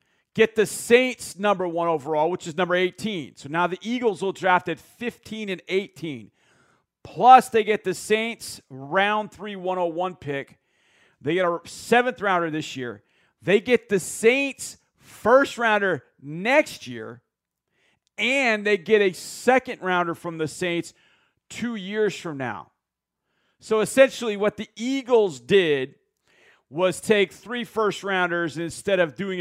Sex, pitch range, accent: male, 165-220 Hz, American